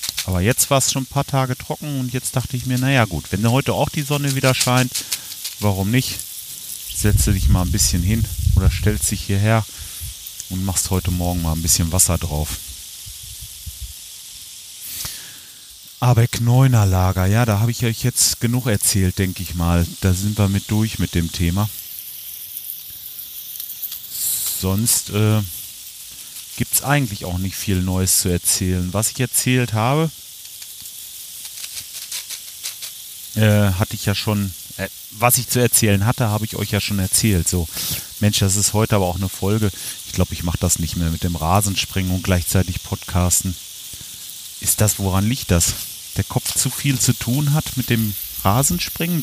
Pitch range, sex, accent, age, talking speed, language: 90-120 Hz, male, German, 40-59, 165 wpm, German